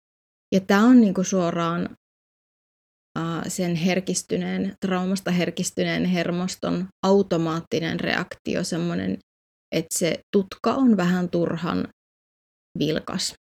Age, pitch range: 20-39, 180-210 Hz